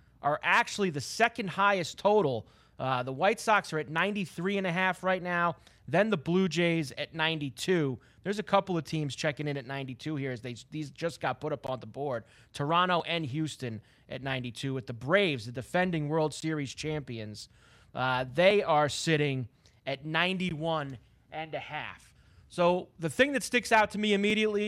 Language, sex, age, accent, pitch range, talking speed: English, male, 30-49, American, 140-195 Hz, 180 wpm